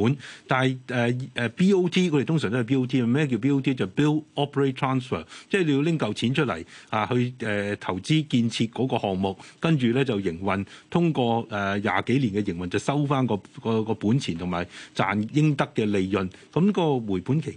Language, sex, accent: Chinese, male, native